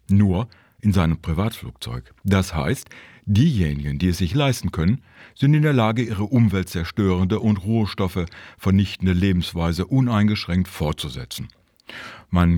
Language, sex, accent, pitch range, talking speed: German, male, German, 85-110 Hz, 120 wpm